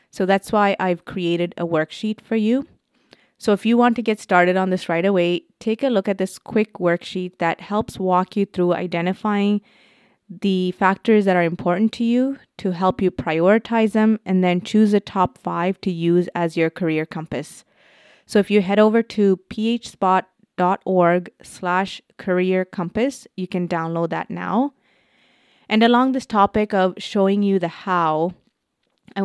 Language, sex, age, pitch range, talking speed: English, female, 20-39, 175-210 Hz, 170 wpm